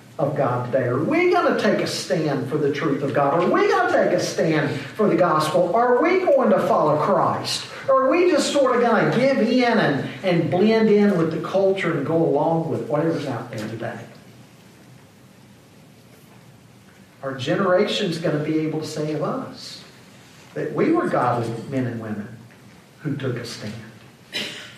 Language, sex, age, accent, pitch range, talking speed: English, male, 50-69, American, 135-215 Hz, 185 wpm